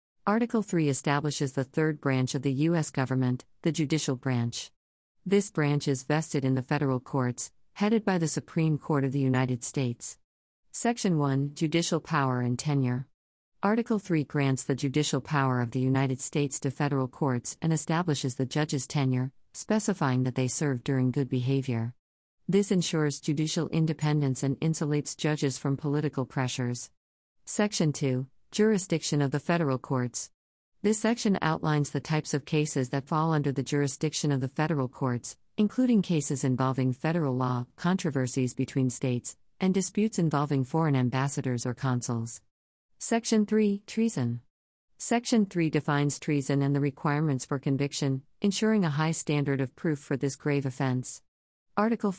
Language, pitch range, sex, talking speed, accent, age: English, 130-160 Hz, female, 150 wpm, American, 50-69